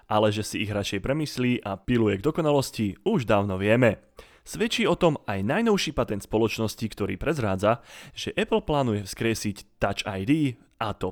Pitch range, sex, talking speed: 105-155 Hz, male, 160 wpm